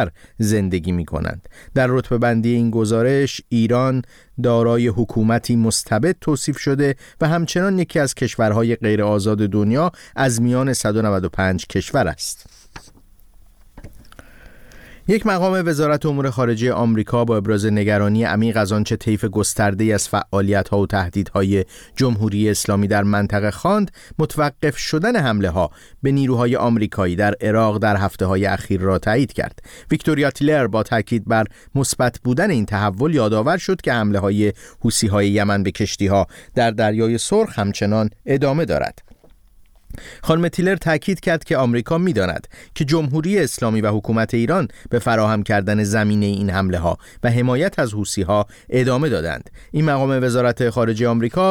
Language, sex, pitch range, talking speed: Persian, male, 105-130 Hz, 140 wpm